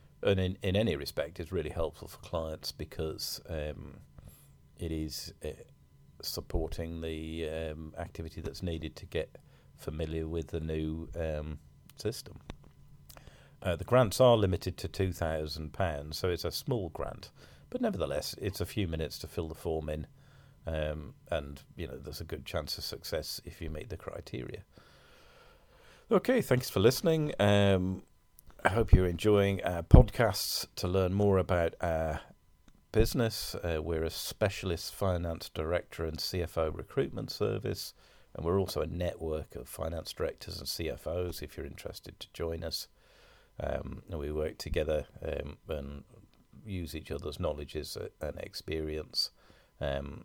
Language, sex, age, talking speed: English, male, 40-59, 150 wpm